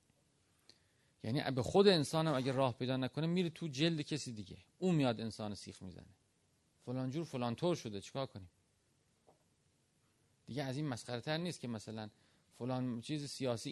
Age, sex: 40-59, male